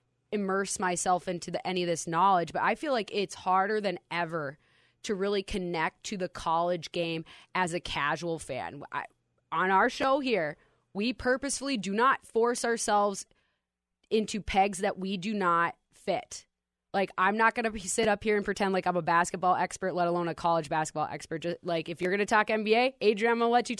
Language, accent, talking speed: English, American, 190 wpm